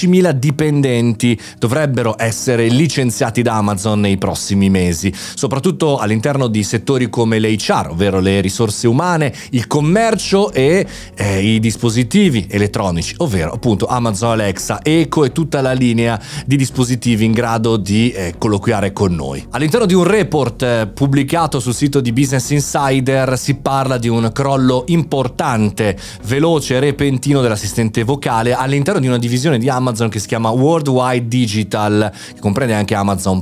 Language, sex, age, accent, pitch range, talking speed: Italian, male, 30-49, native, 105-140 Hz, 145 wpm